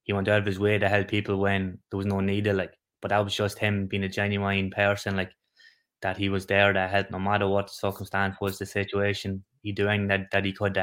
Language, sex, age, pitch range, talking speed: English, male, 20-39, 100-105 Hz, 255 wpm